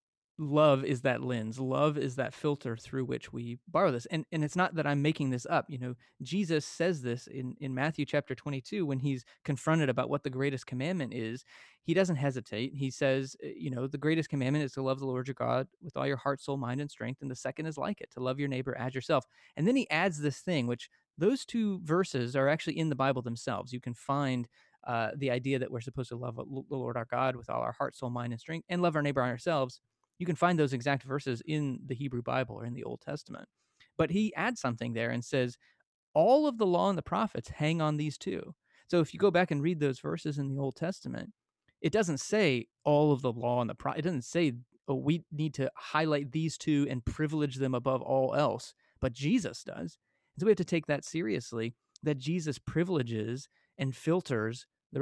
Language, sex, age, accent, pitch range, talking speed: English, male, 30-49, American, 125-155 Hz, 230 wpm